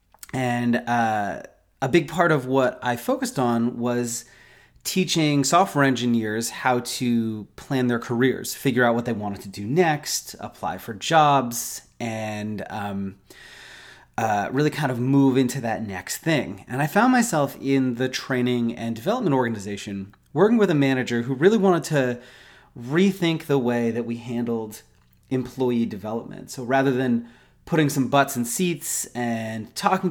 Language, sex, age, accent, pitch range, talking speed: English, male, 30-49, American, 115-145 Hz, 155 wpm